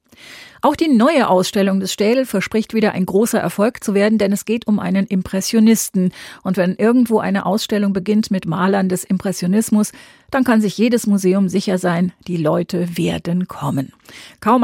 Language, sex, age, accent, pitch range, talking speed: German, female, 40-59, German, 185-225 Hz, 170 wpm